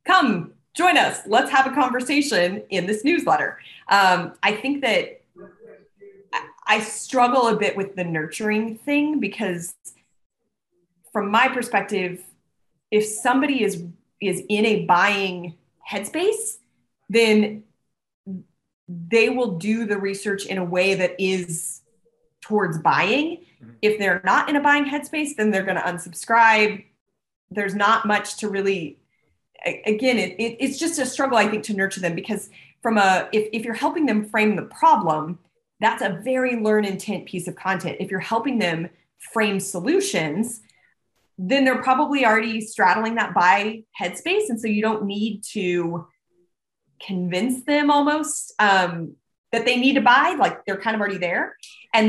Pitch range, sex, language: 180-245 Hz, female, English